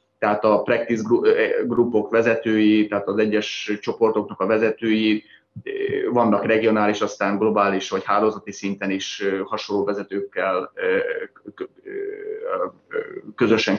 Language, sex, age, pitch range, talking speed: Hungarian, male, 30-49, 100-115 Hz, 95 wpm